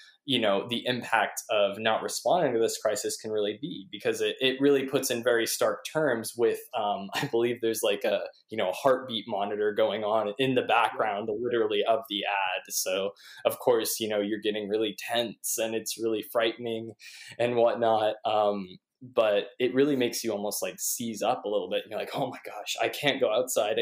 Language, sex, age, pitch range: English, male, 20-39, 110-150 Hz